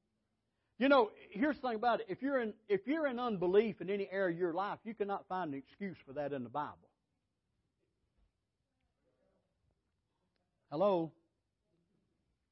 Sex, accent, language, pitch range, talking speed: male, American, English, 175-245 Hz, 150 wpm